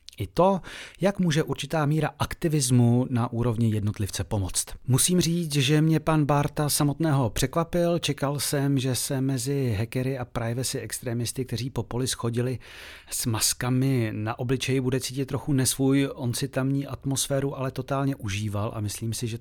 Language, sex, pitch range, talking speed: Czech, male, 115-140 Hz, 150 wpm